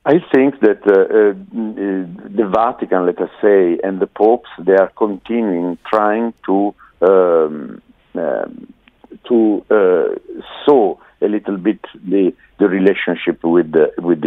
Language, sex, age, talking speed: English, male, 60-79, 135 wpm